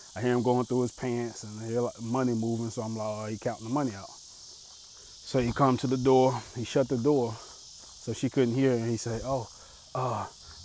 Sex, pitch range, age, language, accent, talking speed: male, 115-130 Hz, 20-39, English, American, 240 wpm